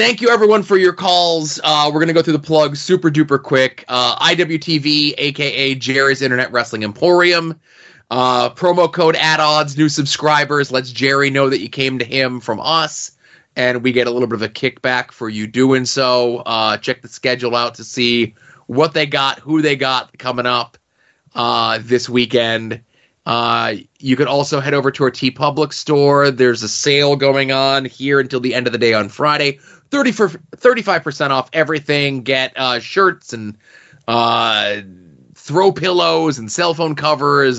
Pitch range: 120-155 Hz